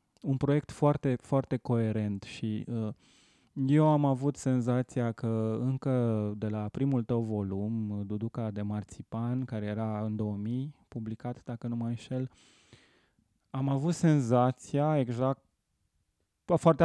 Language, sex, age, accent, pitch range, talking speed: Romanian, male, 20-39, native, 115-140 Hz, 125 wpm